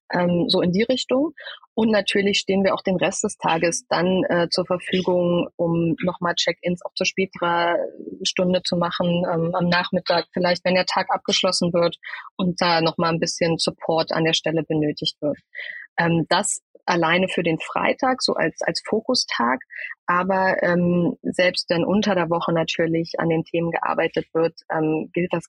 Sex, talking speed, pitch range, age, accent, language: female, 170 wpm, 170-195 Hz, 30-49, German, German